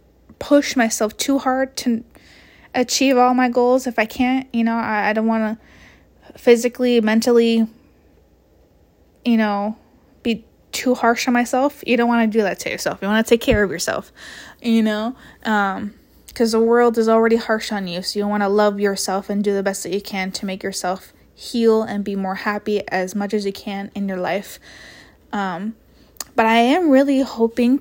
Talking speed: 190 wpm